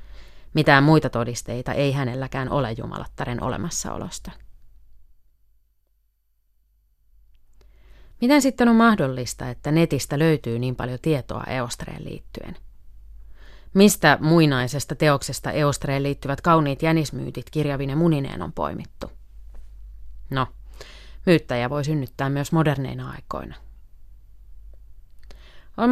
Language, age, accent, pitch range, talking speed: Finnish, 30-49, native, 125-155 Hz, 90 wpm